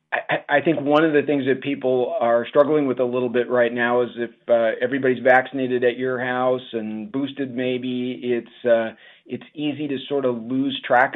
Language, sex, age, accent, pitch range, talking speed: English, male, 40-59, American, 115-130 Hz, 195 wpm